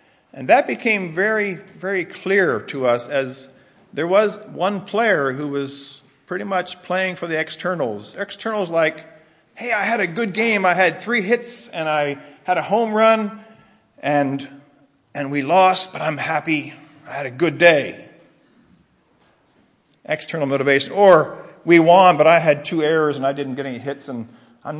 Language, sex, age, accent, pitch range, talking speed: English, male, 50-69, American, 140-190 Hz, 165 wpm